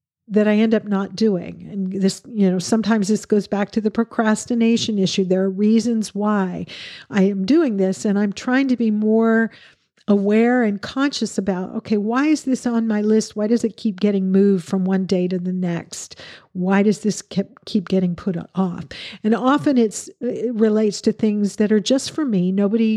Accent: American